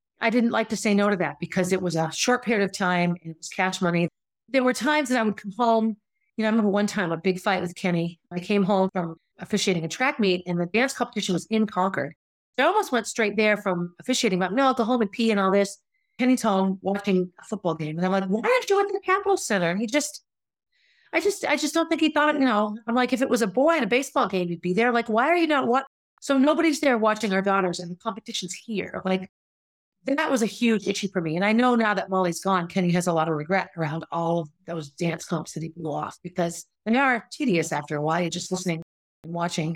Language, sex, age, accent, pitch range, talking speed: English, female, 40-59, American, 180-245 Hz, 265 wpm